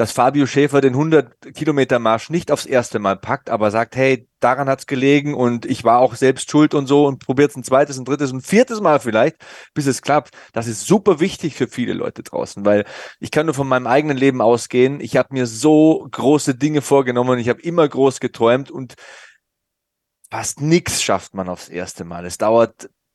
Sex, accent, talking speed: male, German, 205 wpm